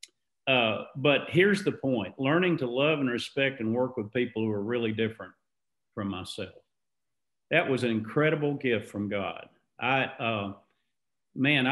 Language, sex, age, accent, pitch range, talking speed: English, male, 50-69, American, 115-145 Hz, 155 wpm